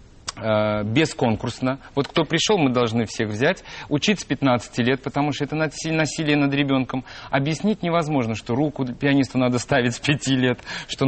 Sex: male